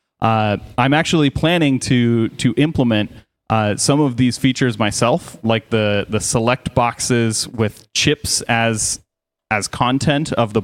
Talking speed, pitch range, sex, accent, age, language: 140 wpm, 110-140 Hz, male, American, 30-49, English